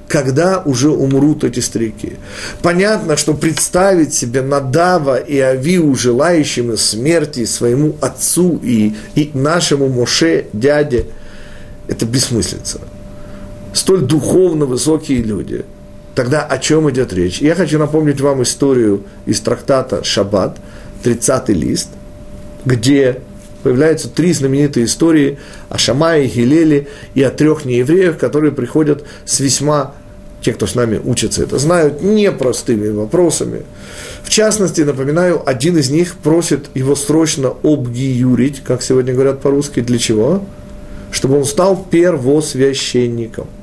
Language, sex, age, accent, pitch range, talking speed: Russian, male, 40-59, native, 120-155 Hz, 120 wpm